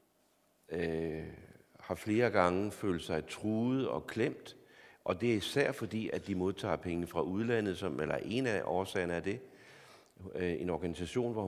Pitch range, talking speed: 90-115 Hz, 160 wpm